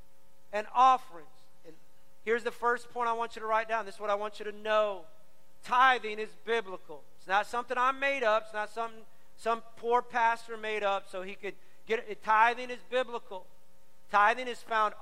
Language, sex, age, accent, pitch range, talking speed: English, male, 40-59, American, 205-240 Hz, 195 wpm